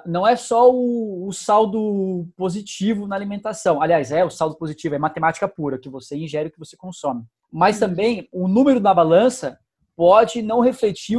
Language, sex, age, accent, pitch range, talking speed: English, male, 20-39, Brazilian, 160-230 Hz, 175 wpm